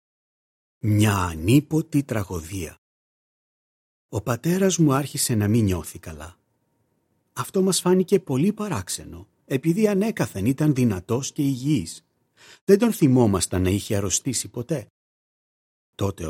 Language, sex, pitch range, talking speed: Greek, male, 95-135 Hz, 110 wpm